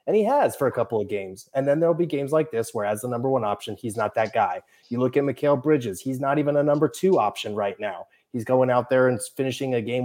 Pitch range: 115-140 Hz